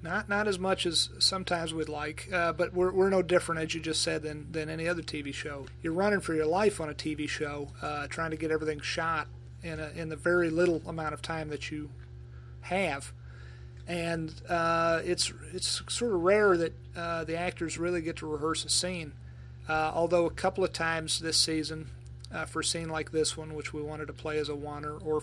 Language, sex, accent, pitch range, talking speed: English, male, American, 145-165 Hz, 220 wpm